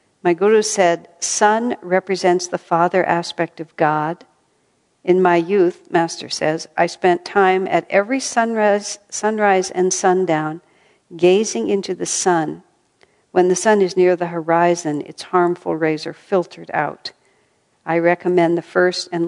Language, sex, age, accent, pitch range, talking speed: English, female, 60-79, American, 165-195 Hz, 145 wpm